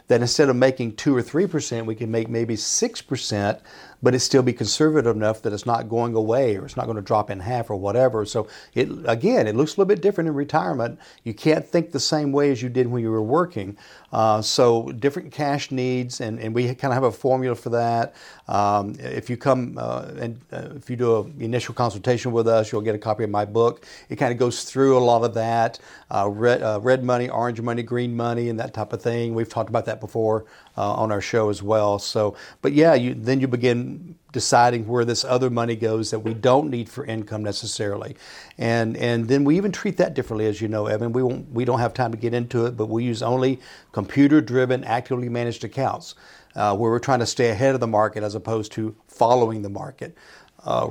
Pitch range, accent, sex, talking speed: 110-130 Hz, American, male, 230 wpm